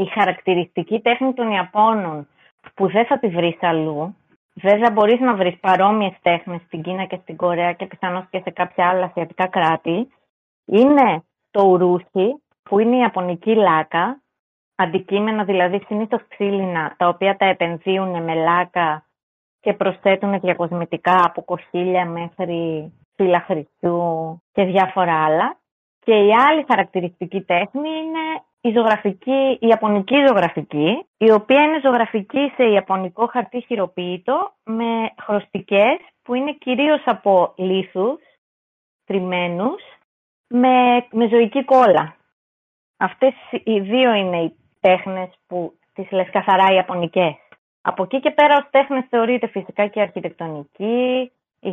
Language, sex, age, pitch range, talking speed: Greek, female, 20-39, 180-230 Hz, 130 wpm